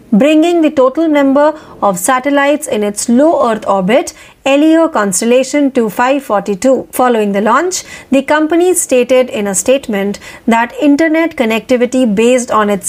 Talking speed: 140 wpm